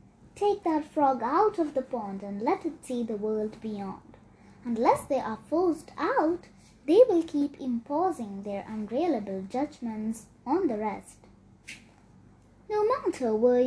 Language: English